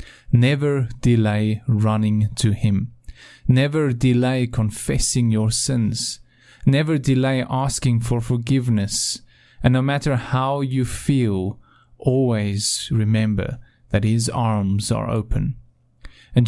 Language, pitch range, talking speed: English, 115-140 Hz, 105 wpm